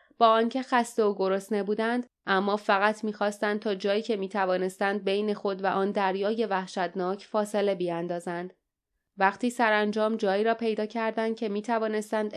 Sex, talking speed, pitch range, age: female, 140 wpm, 190-225 Hz, 20-39